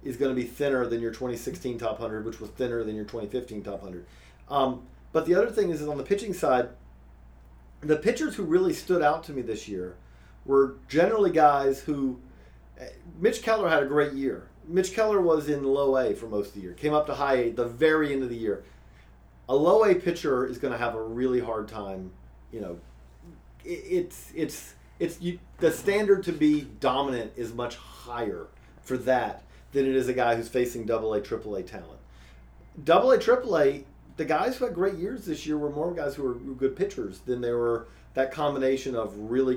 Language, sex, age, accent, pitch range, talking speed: English, male, 40-59, American, 110-155 Hz, 210 wpm